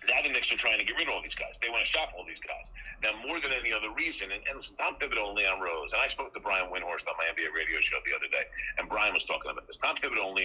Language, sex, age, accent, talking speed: English, male, 50-69, American, 315 wpm